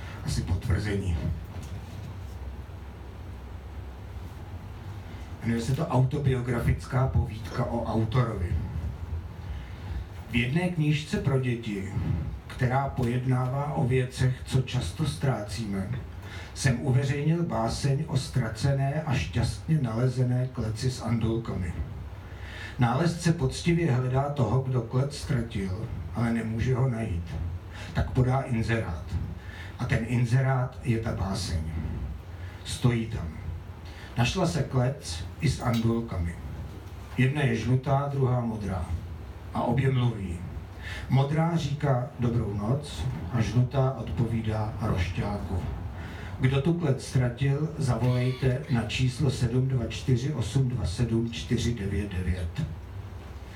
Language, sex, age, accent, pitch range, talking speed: Czech, male, 50-69, native, 95-130 Hz, 95 wpm